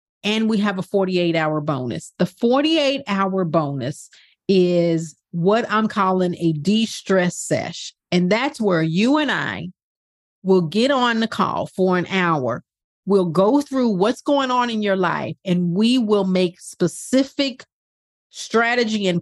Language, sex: English, female